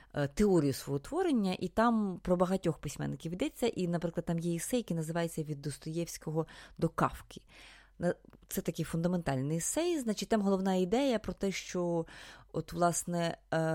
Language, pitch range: Ukrainian, 150-190 Hz